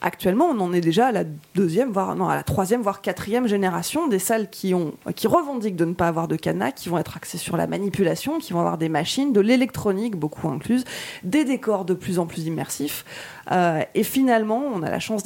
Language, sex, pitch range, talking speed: French, female, 175-235 Hz, 230 wpm